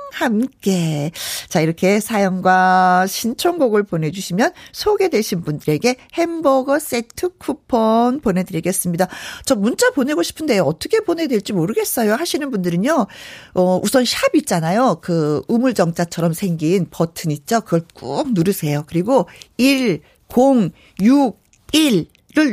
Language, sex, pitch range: Korean, female, 185-295 Hz